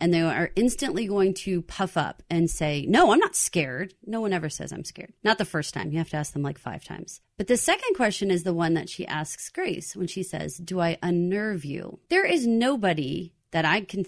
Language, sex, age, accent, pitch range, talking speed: English, female, 30-49, American, 160-205 Hz, 240 wpm